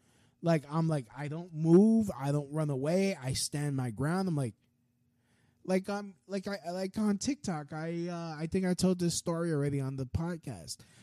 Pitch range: 120-185 Hz